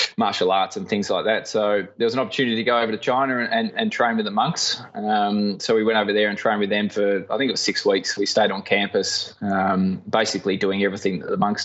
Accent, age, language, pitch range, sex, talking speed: Australian, 20-39, English, 95-110 Hz, male, 265 wpm